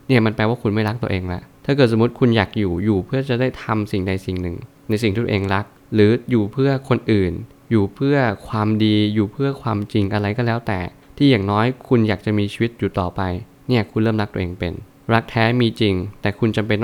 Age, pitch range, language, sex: 20-39, 100-120 Hz, Thai, male